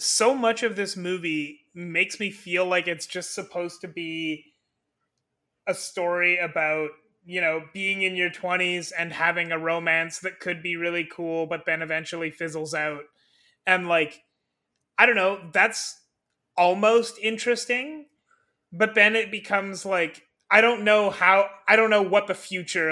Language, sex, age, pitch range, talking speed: English, male, 30-49, 165-200 Hz, 155 wpm